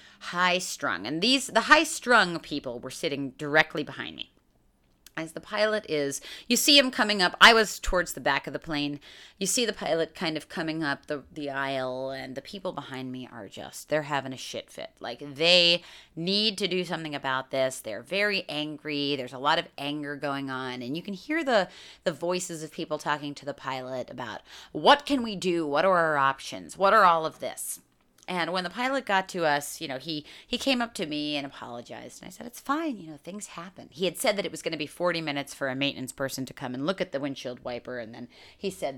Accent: American